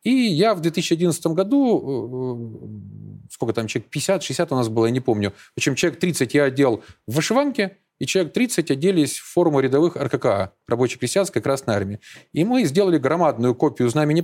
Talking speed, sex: 170 wpm, male